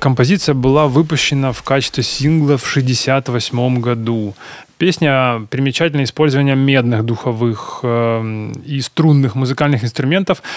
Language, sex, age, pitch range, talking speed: Ukrainian, male, 20-39, 135-165 Hz, 110 wpm